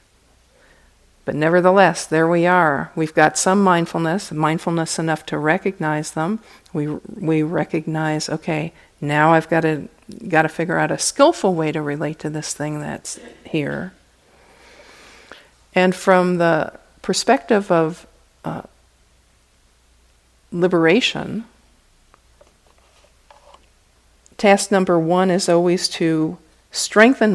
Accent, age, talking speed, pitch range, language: American, 50-69, 110 wpm, 155-180 Hz, English